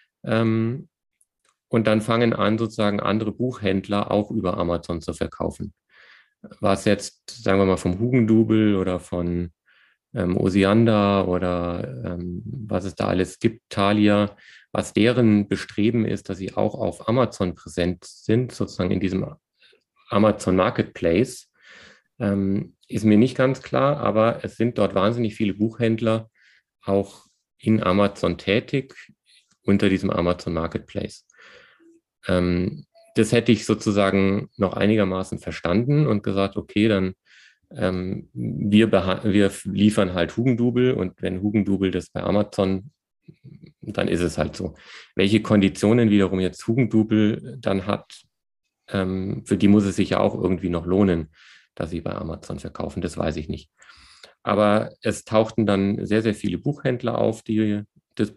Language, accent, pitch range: German, German, 95-110 Hz